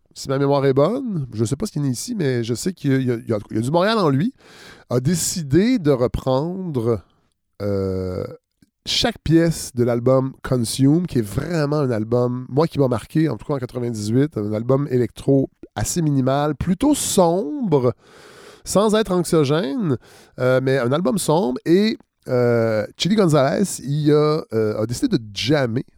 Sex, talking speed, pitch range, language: male, 175 wpm, 120-165 Hz, French